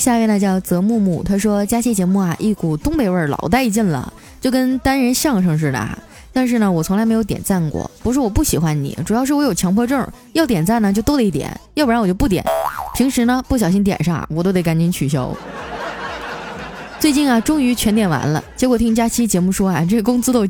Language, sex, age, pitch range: Chinese, female, 20-39, 170-235 Hz